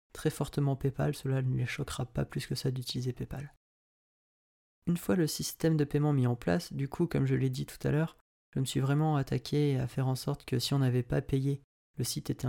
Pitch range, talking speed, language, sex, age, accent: 125-145 Hz, 235 wpm, French, male, 30-49, French